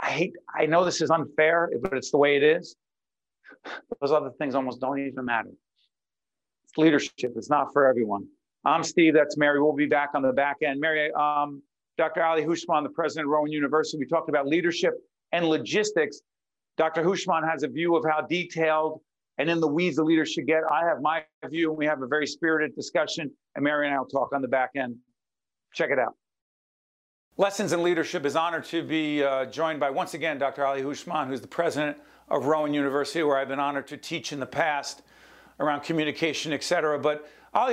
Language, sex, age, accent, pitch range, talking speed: English, male, 50-69, American, 145-170 Hz, 205 wpm